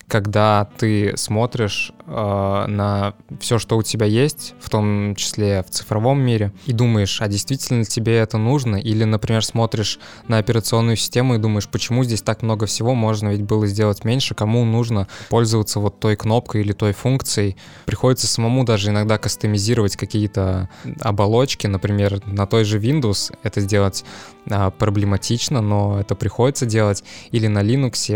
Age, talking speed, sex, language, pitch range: 20-39, 155 wpm, male, Russian, 100-120 Hz